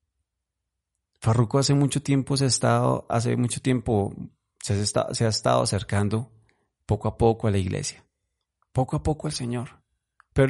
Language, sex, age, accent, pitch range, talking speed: Spanish, male, 30-49, Colombian, 95-120 Hz, 165 wpm